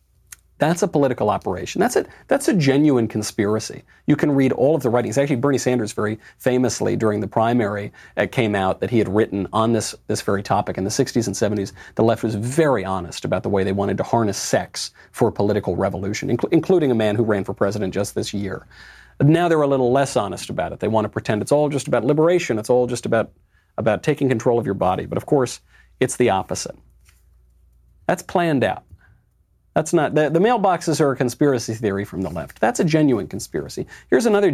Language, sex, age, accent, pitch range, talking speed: English, male, 40-59, American, 100-140 Hz, 215 wpm